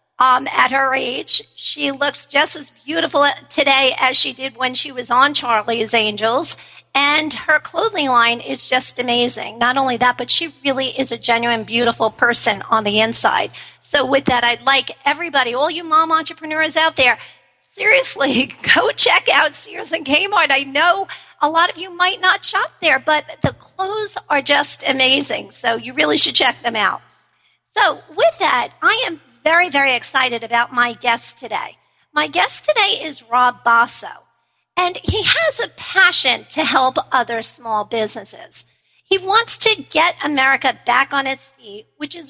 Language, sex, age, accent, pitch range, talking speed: English, female, 50-69, American, 240-320 Hz, 170 wpm